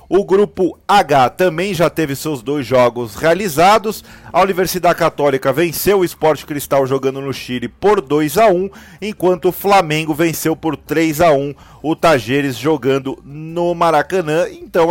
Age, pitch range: 40-59, 130-175 Hz